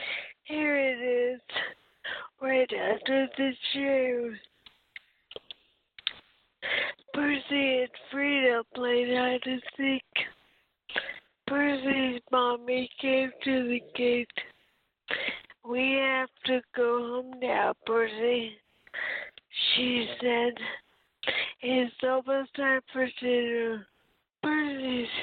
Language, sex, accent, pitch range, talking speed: English, female, American, 240-265 Hz, 85 wpm